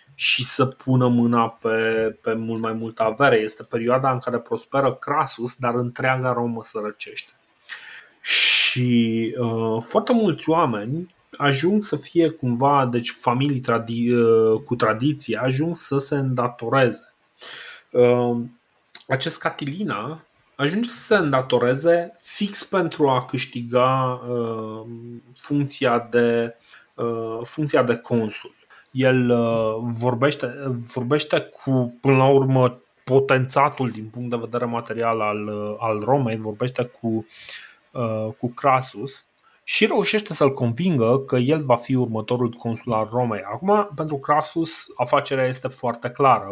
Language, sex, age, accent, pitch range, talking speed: Romanian, male, 30-49, native, 115-135 Hz, 120 wpm